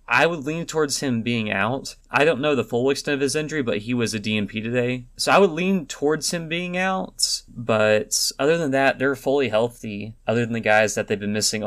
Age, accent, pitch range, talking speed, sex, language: 20-39, American, 110-140 Hz, 230 wpm, male, English